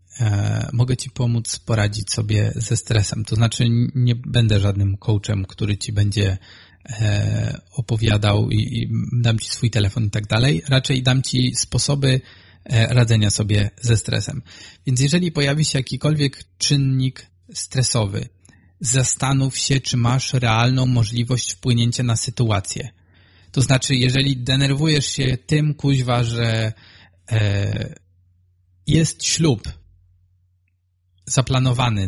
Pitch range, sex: 105-135 Hz, male